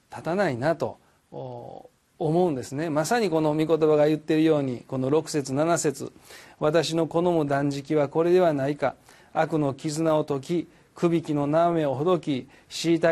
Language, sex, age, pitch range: Japanese, male, 40-59, 135-170 Hz